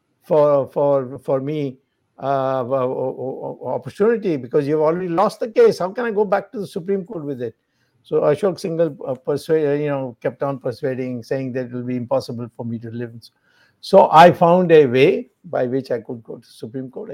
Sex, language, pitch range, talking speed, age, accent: male, English, 135-180 Hz, 200 wpm, 60-79, Indian